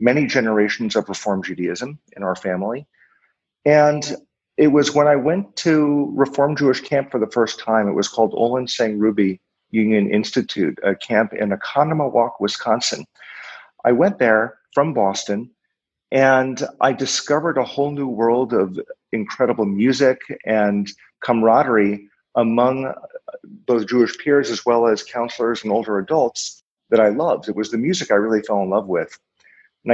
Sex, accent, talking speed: male, American, 155 wpm